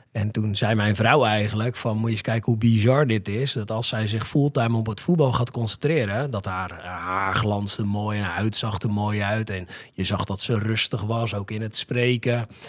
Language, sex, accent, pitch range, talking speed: Dutch, male, Dutch, 100-120 Hz, 220 wpm